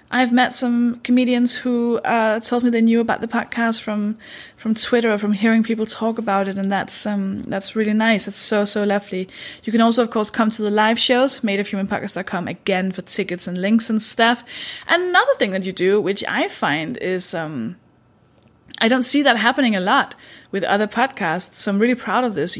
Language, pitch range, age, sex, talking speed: English, 190-240 Hz, 20-39, female, 205 wpm